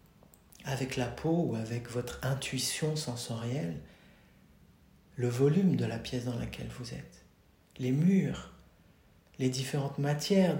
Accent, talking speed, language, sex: French, 125 wpm, French, male